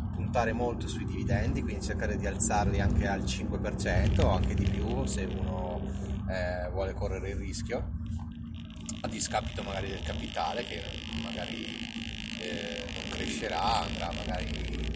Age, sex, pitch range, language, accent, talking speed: 30-49, male, 80-105 Hz, Italian, native, 130 wpm